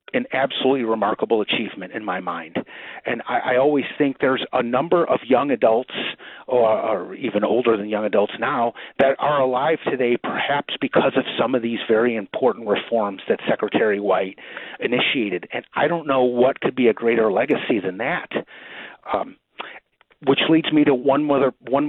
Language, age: English, 40-59